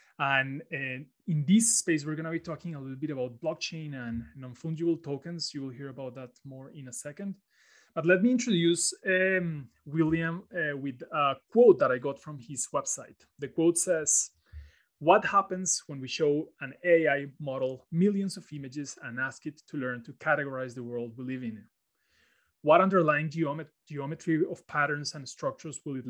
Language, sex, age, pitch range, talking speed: English, male, 30-49, 135-165 Hz, 175 wpm